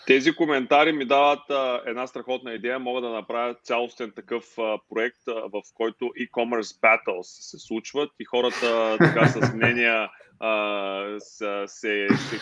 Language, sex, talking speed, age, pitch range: Bulgarian, male, 135 wpm, 30-49, 105-125 Hz